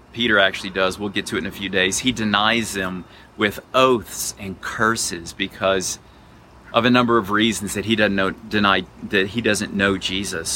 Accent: American